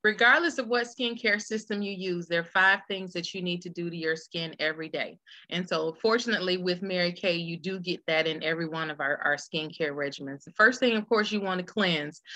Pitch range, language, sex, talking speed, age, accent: 160-195 Hz, English, female, 235 wpm, 30-49, American